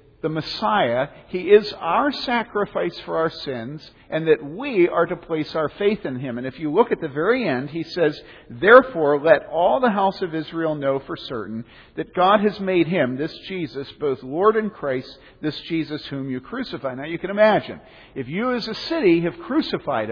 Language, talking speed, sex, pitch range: English, 195 wpm, male, 140-200 Hz